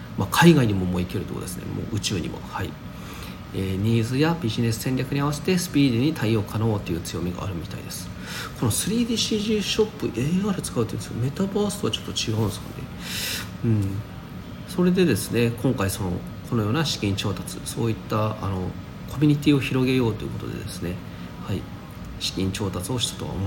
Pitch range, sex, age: 100-145 Hz, male, 40-59